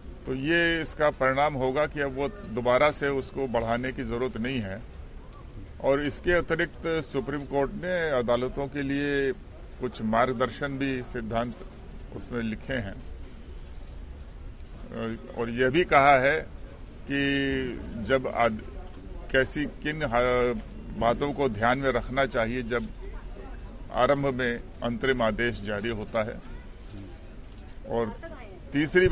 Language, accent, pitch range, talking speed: Hindi, native, 115-145 Hz, 120 wpm